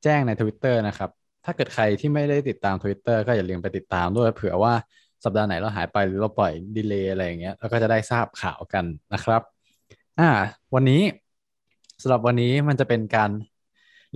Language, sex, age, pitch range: Thai, male, 20-39, 95-125 Hz